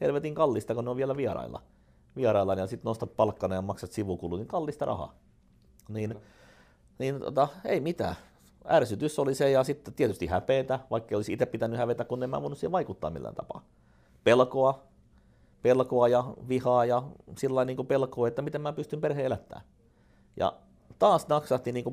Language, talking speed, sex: Finnish, 165 wpm, male